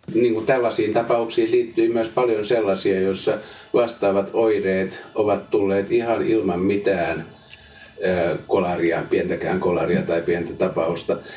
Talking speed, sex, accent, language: 110 wpm, male, native, Finnish